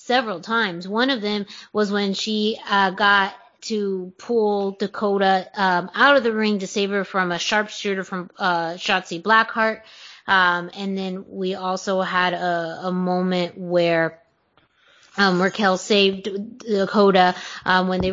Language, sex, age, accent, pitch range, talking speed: English, female, 20-39, American, 190-230 Hz, 150 wpm